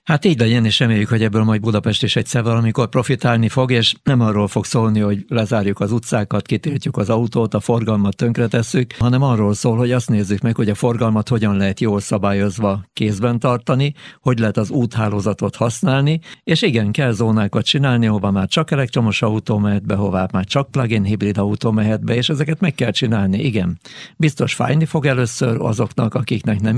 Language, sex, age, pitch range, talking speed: Hungarian, male, 60-79, 105-125 Hz, 185 wpm